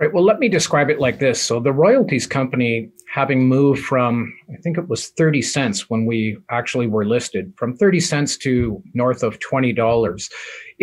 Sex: male